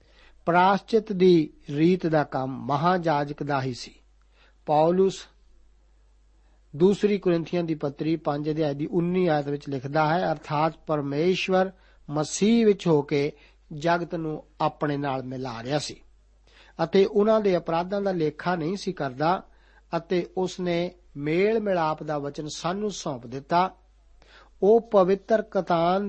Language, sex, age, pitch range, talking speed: Punjabi, male, 60-79, 145-180 Hz, 90 wpm